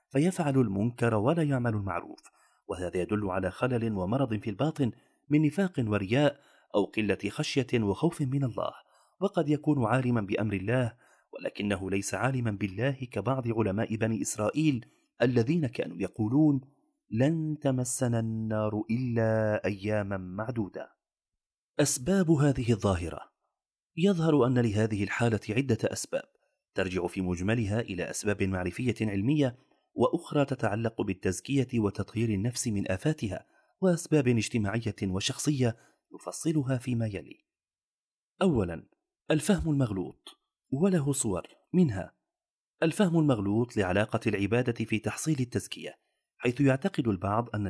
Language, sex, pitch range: Arabic, male, 105-140 Hz